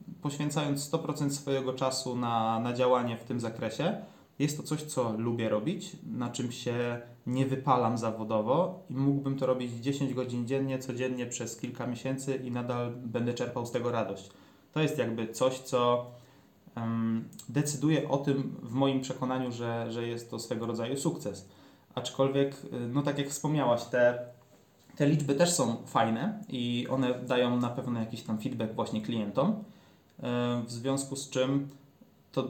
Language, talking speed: Polish, 155 wpm